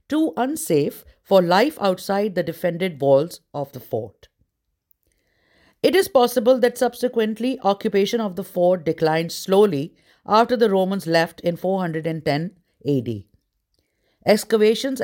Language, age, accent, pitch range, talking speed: English, 50-69, Indian, 165-235 Hz, 120 wpm